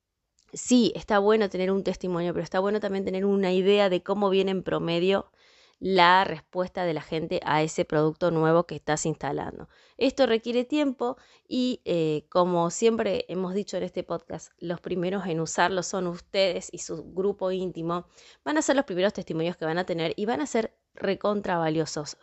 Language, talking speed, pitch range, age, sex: Spanish, 180 wpm, 170-220 Hz, 20-39, female